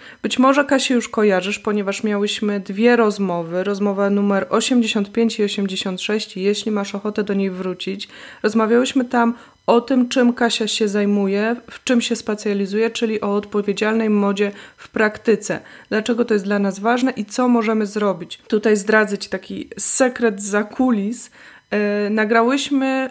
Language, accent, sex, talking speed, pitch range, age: Polish, native, female, 145 wpm, 205-245 Hz, 20-39